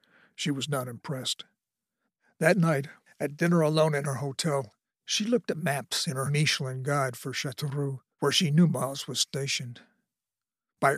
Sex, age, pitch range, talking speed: male, 50-69, 135-165 Hz, 160 wpm